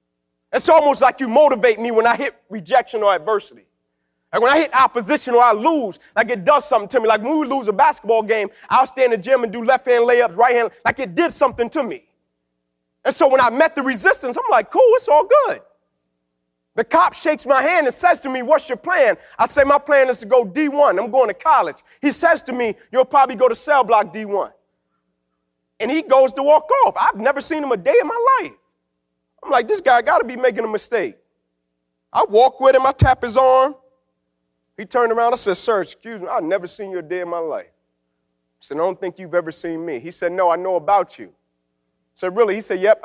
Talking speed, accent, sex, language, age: 235 wpm, American, male, English, 30-49